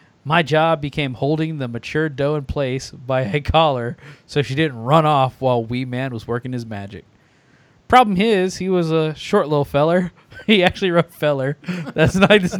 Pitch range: 140-180 Hz